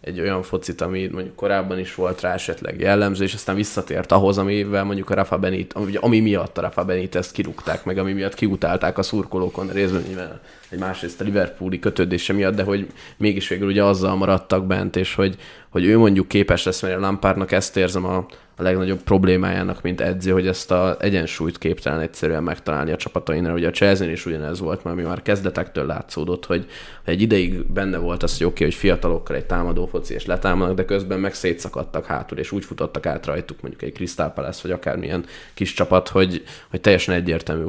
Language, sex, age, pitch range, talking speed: Hungarian, male, 20-39, 90-100 Hz, 200 wpm